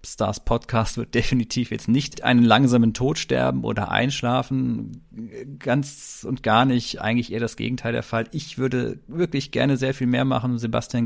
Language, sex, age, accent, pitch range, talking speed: German, male, 40-59, German, 115-140 Hz, 170 wpm